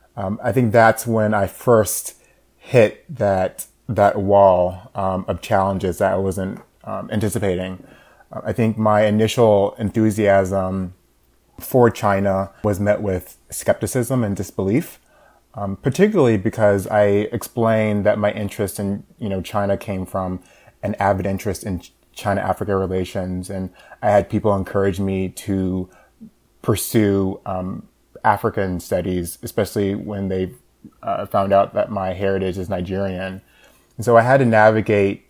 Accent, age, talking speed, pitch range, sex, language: American, 20-39, 140 wpm, 95-105 Hz, male, English